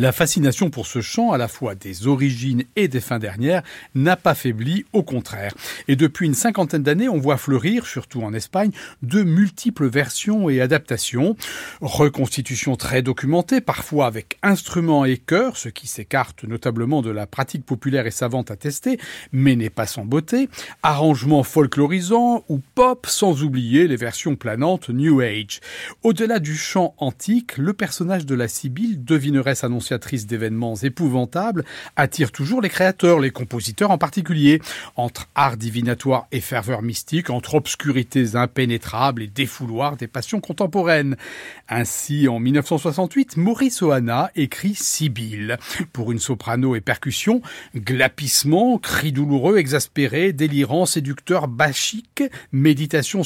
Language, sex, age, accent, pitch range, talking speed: French, male, 40-59, French, 125-175 Hz, 140 wpm